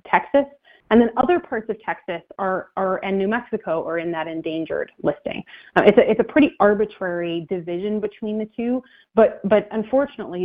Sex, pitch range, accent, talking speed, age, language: female, 170-210 Hz, American, 180 wpm, 30-49, English